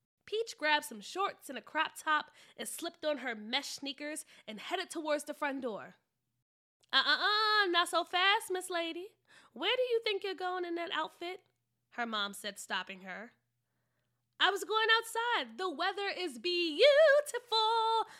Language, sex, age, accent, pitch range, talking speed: English, female, 20-39, American, 245-370 Hz, 165 wpm